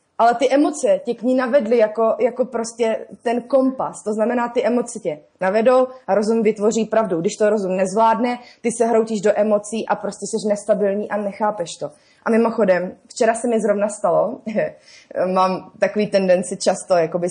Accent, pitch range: native, 200-260 Hz